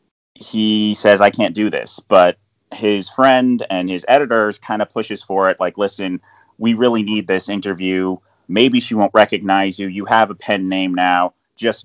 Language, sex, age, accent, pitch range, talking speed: English, male, 30-49, American, 95-125 Hz, 180 wpm